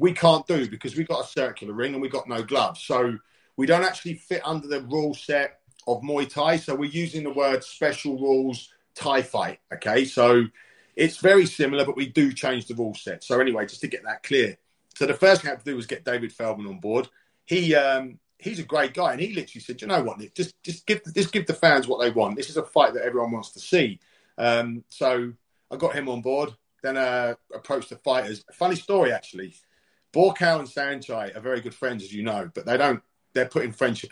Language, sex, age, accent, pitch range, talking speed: English, male, 40-59, British, 125-180 Hz, 230 wpm